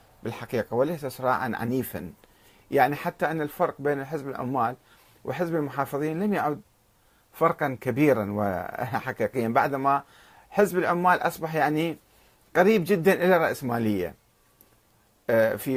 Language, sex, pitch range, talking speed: Arabic, male, 110-170 Hz, 110 wpm